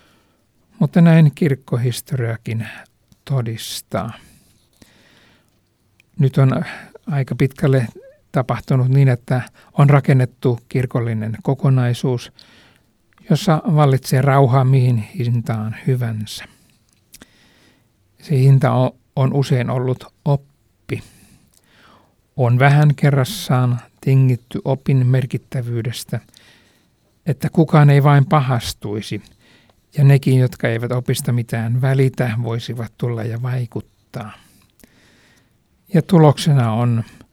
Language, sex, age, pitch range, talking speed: Finnish, male, 60-79, 120-140 Hz, 85 wpm